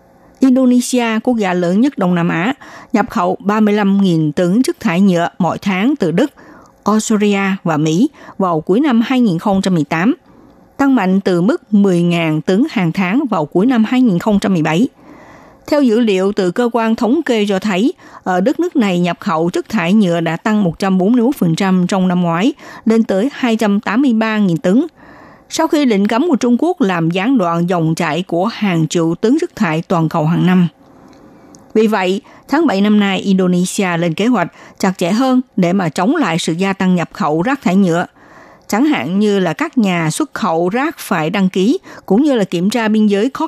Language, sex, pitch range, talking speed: Vietnamese, female, 180-255 Hz, 185 wpm